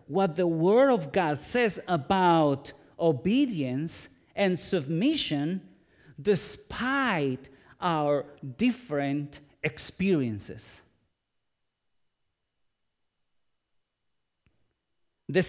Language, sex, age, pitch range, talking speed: English, male, 40-59, 160-250 Hz, 60 wpm